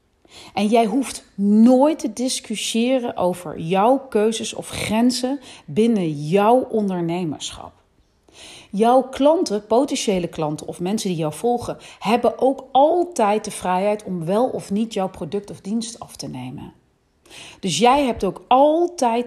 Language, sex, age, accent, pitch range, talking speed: Dutch, female, 40-59, Dutch, 185-240 Hz, 135 wpm